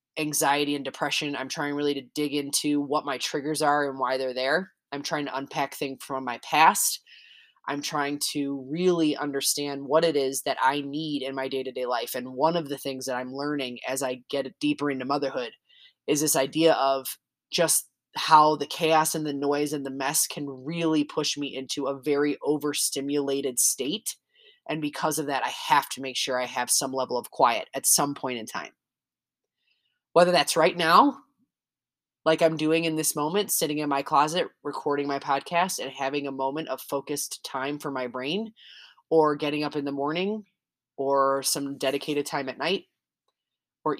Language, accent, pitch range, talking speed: English, American, 135-155 Hz, 185 wpm